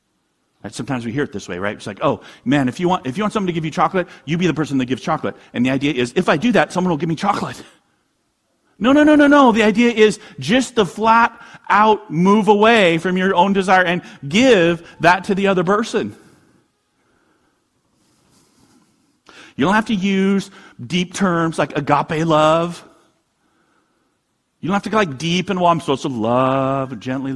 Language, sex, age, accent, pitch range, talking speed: English, male, 40-59, American, 145-215 Hz, 200 wpm